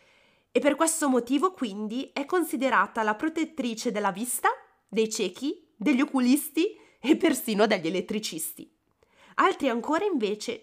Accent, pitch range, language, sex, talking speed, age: native, 215-315 Hz, Italian, female, 125 wpm, 20-39